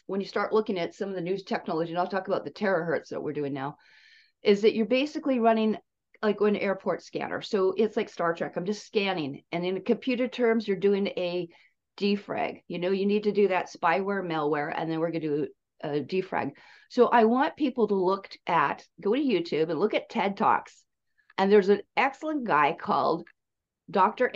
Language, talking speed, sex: English, 205 wpm, female